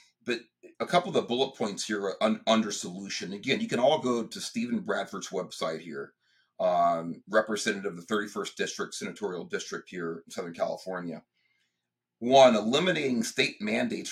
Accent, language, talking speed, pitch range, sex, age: American, English, 155 wpm, 85-125 Hz, male, 40-59